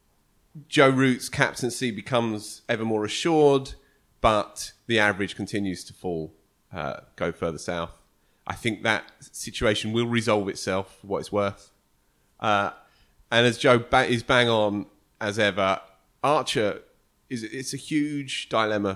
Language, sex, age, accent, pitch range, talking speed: English, male, 30-49, British, 100-130 Hz, 140 wpm